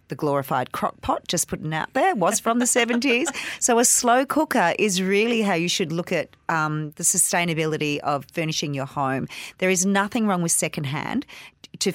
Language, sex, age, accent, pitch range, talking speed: English, female, 40-59, Australian, 155-195 Hz, 185 wpm